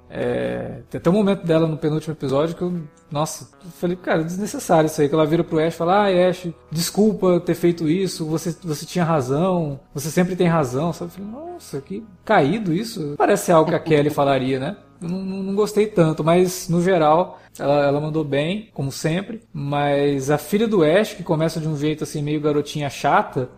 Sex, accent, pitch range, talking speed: male, Brazilian, 135-175 Hz, 205 wpm